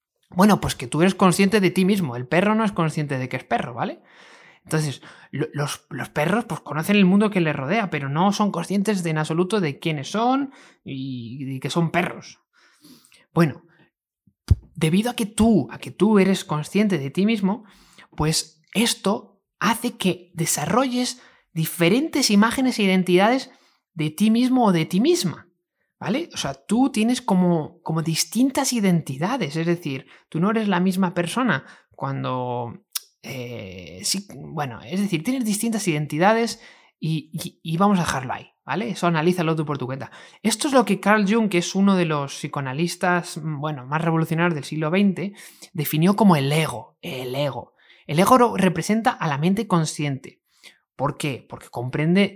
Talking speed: 165 wpm